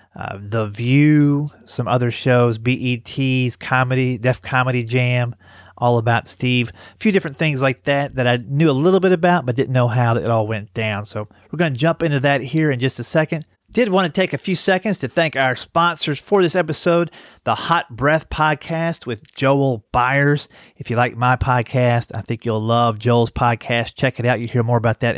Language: English